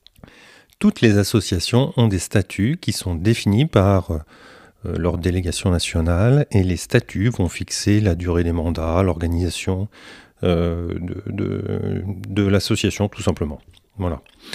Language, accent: French, French